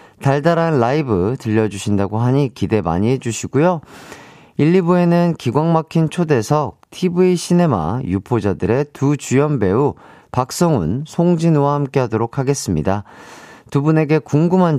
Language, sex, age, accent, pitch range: Korean, male, 40-59, native, 110-155 Hz